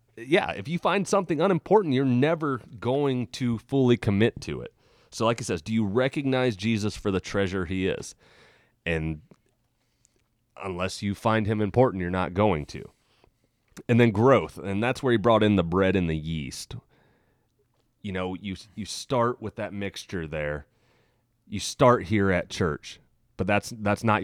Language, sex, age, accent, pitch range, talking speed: English, male, 30-49, American, 90-120 Hz, 170 wpm